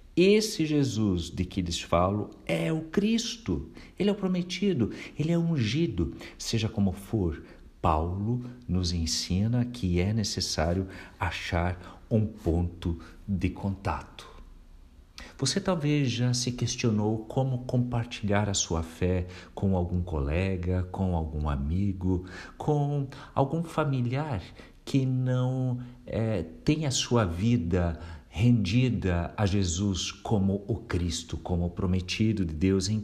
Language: Portuguese